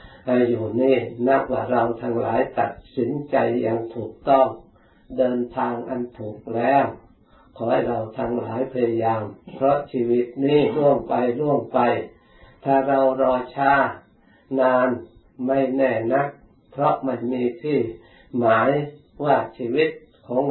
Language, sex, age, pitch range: Thai, male, 60-79, 120-135 Hz